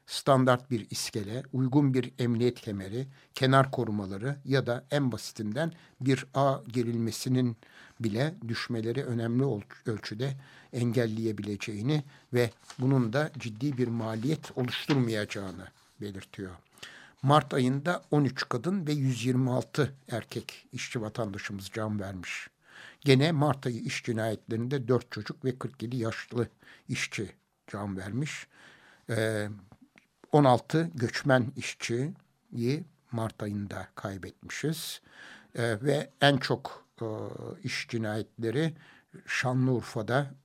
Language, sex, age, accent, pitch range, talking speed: Turkish, male, 60-79, native, 110-140 Hz, 100 wpm